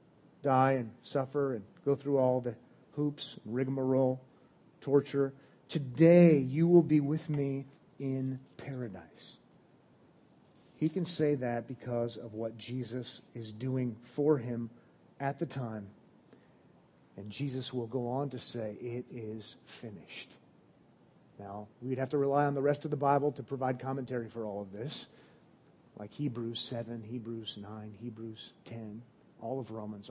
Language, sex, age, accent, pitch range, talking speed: English, male, 40-59, American, 115-140 Hz, 145 wpm